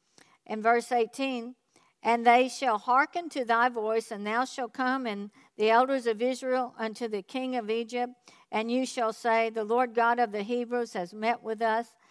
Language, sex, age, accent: English, female, 60-79, American